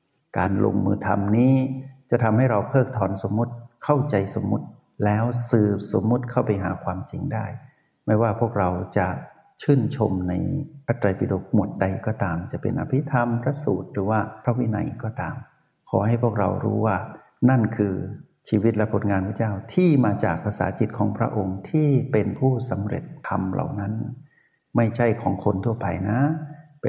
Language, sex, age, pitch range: Thai, male, 60-79, 100-125 Hz